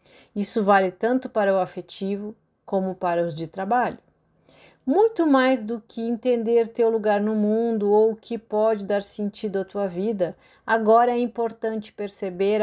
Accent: Brazilian